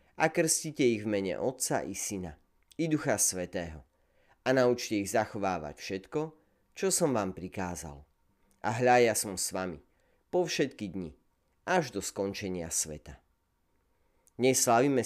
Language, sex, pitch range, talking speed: Slovak, male, 85-125 Hz, 140 wpm